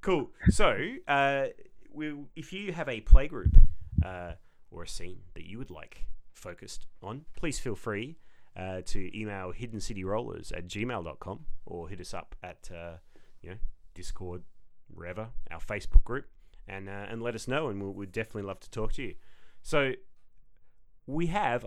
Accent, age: Australian, 30-49